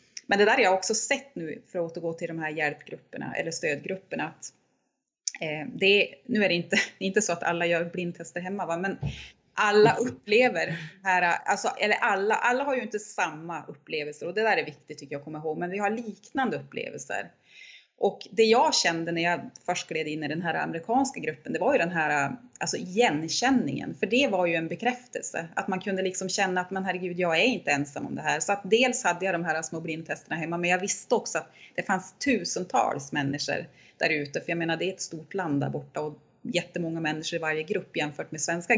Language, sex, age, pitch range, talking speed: Swedish, female, 30-49, 160-205 Hz, 215 wpm